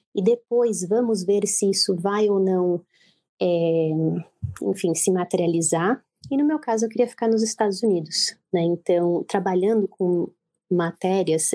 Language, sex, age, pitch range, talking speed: Portuguese, female, 20-39, 190-245 Hz, 145 wpm